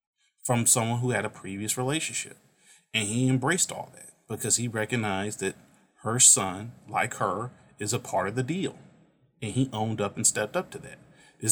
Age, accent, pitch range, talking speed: 30-49, American, 110-135 Hz, 190 wpm